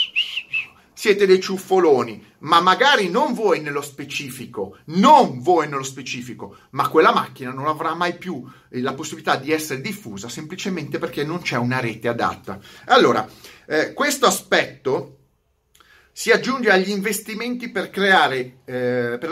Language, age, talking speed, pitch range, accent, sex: Italian, 30-49, 135 wpm, 140-210 Hz, native, male